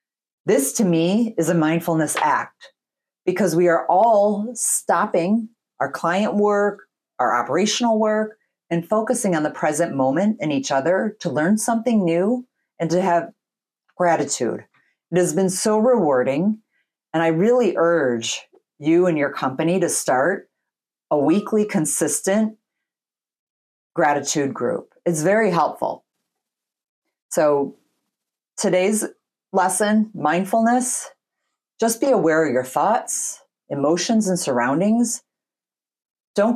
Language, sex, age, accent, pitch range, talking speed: English, female, 40-59, American, 155-215 Hz, 120 wpm